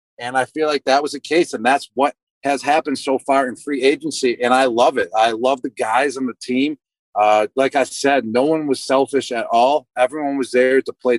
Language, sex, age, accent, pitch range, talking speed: English, male, 40-59, American, 125-150 Hz, 235 wpm